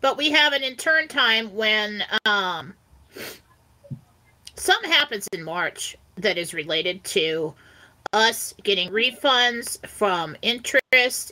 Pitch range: 210-270 Hz